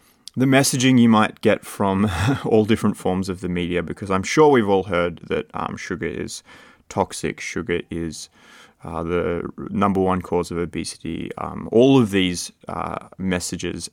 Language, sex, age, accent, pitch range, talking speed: English, male, 20-39, Australian, 90-110 Hz, 165 wpm